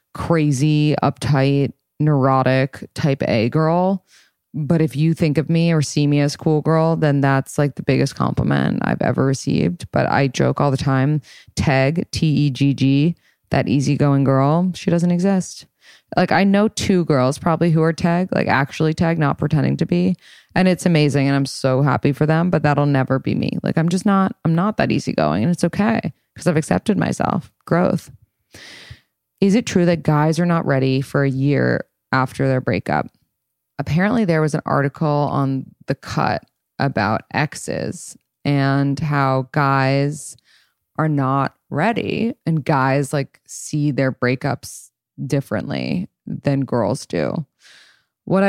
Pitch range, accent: 135-170 Hz, American